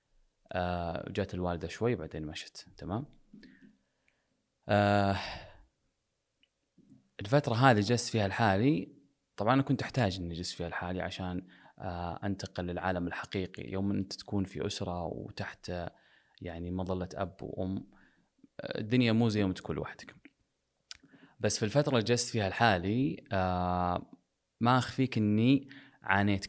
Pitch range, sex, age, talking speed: 90-115 Hz, male, 20-39, 120 wpm